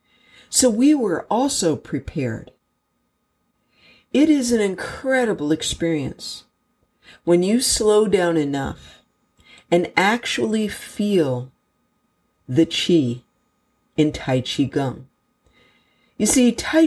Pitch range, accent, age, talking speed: 150-215 Hz, American, 50-69, 95 wpm